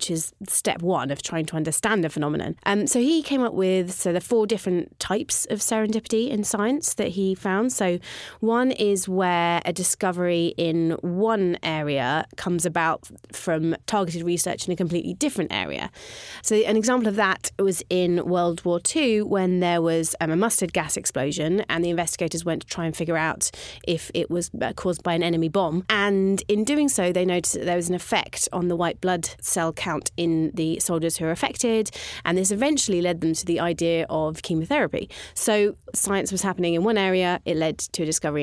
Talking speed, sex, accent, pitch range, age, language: 200 wpm, female, British, 165-195 Hz, 30-49, English